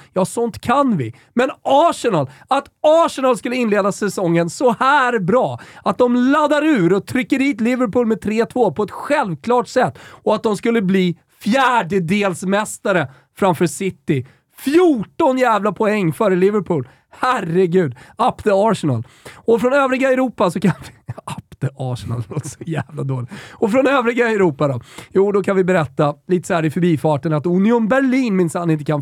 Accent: native